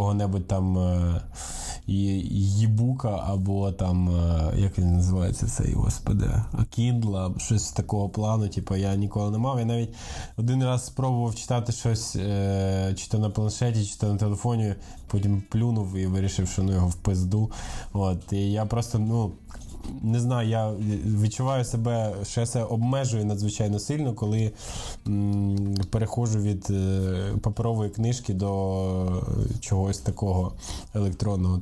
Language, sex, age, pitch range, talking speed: Ukrainian, male, 20-39, 100-120 Hz, 140 wpm